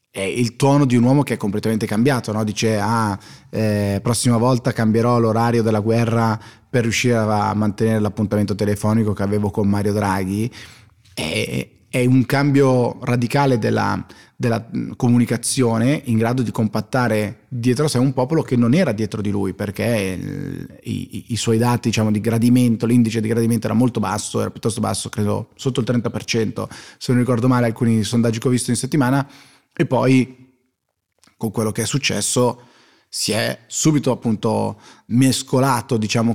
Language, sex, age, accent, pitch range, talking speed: Italian, male, 30-49, native, 105-125 Hz, 165 wpm